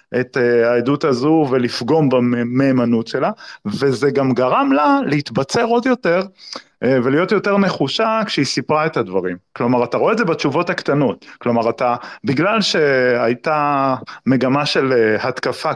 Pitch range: 120-165 Hz